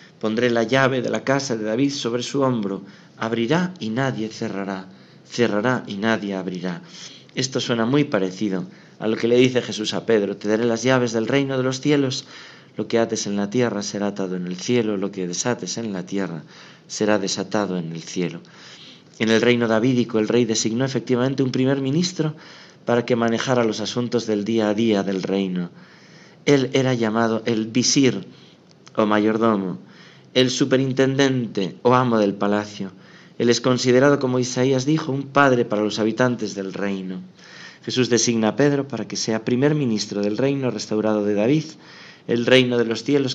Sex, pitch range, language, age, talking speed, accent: male, 105-130 Hz, Spanish, 40-59, 180 wpm, Spanish